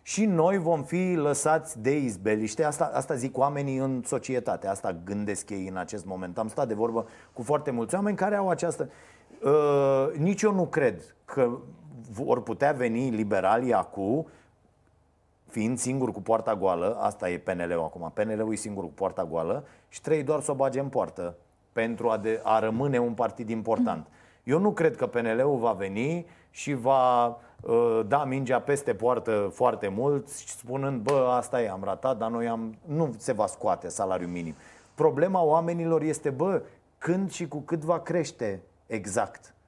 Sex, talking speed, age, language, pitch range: male, 170 wpm, 30-49, Romanian, 110-145 Hz